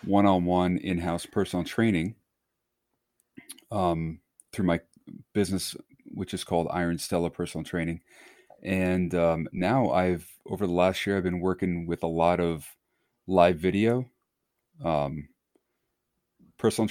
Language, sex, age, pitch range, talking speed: English, male, 30-49, 85-105 Hz, 120 wpm